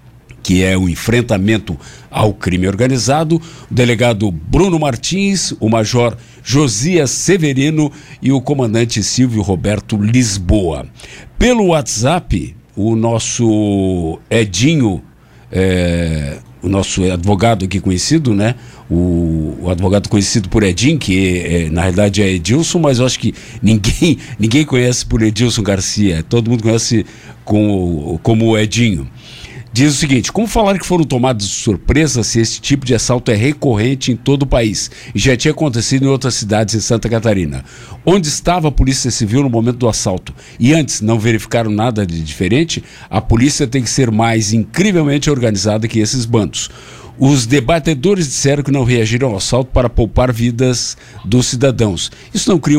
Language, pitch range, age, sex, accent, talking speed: Portuguese, 105-135 Hz, 60-79, male, Brazilian, 155 wpm